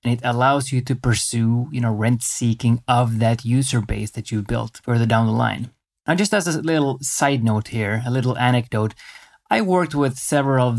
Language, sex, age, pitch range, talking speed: English, male, 20-39, 115-135 Hz, 205 wpm